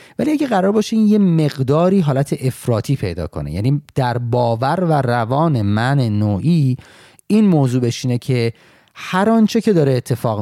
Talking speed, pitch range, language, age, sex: 155 wpm, 115-150 Hz, Persian, 30-49, male